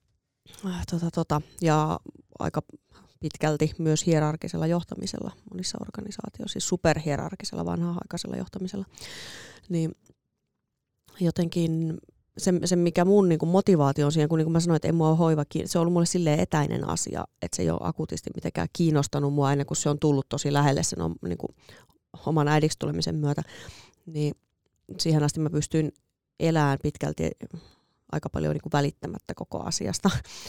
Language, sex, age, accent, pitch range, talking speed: Finnish, female, 30-49, native, 145-170 Hz, 145 wpm